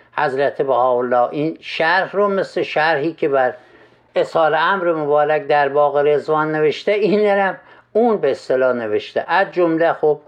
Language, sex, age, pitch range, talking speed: Persian, male, 60-79, 140-205 Hz, 145 wpm